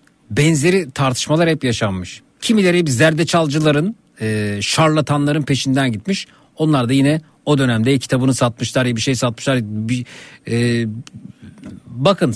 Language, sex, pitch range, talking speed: Turkish, male, 115-160 Hz, 105 wpm